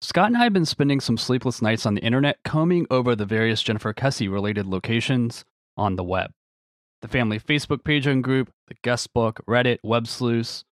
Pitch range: 105-145 Hz